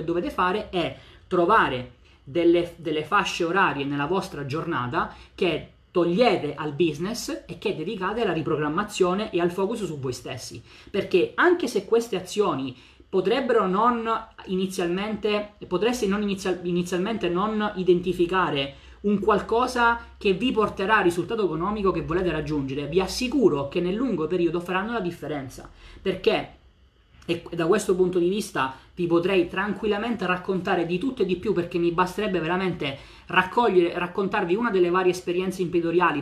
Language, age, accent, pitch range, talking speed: Italian, 20-39, native, 170-210 Hz, 140 wpm